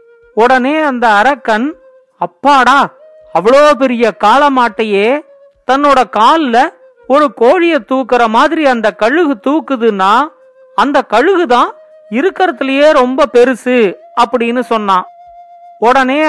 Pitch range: 230-310 Hz